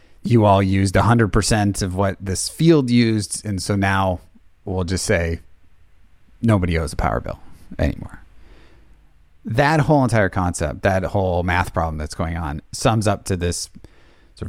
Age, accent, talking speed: 30-49, American, 155 wpm